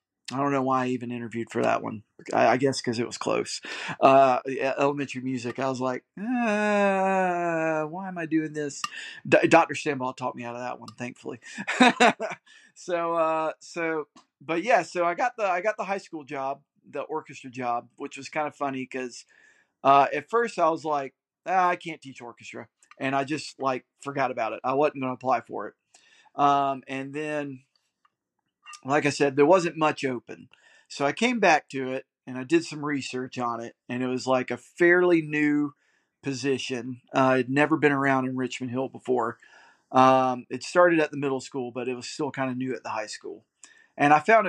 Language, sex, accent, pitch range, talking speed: English, male, American, 130-160 Hz, 200 wpm